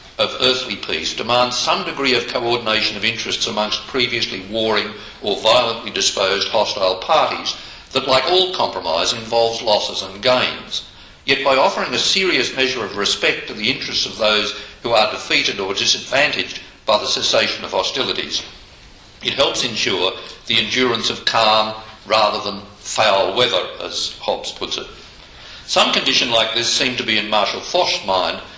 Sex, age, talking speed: male, 60-79, 160 wpm